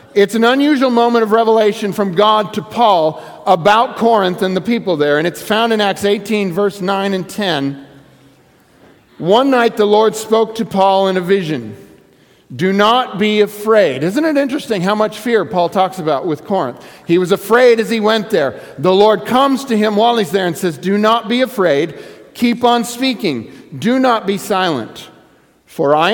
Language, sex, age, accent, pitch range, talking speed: English, male, 50-69, American, 185-235 Hz, 185 wpm